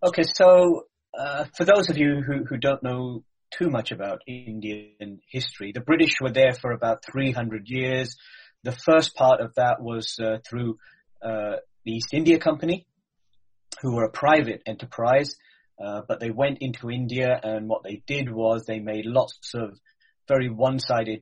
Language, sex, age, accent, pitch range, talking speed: English, male, 30-49, British, 110-135 Hz, 165 wpm